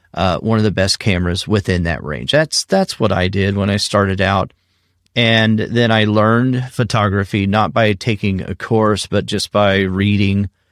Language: English